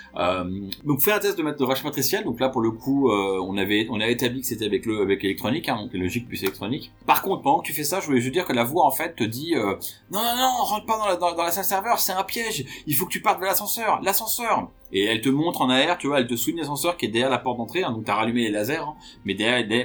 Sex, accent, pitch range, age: male, French, 110-150 Hz, 30-49